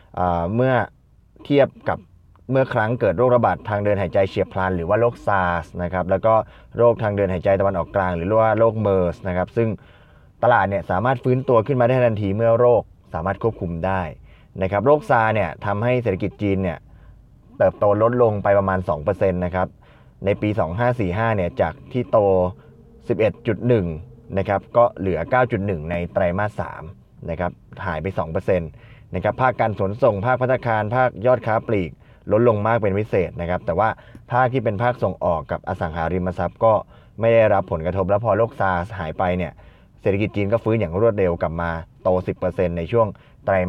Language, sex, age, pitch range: Thai, male, 20-39, 90-120 Hz